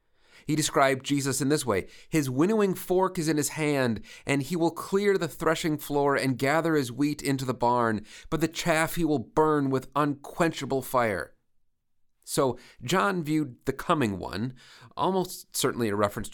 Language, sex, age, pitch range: English, male, 30-49, 115-160 Hz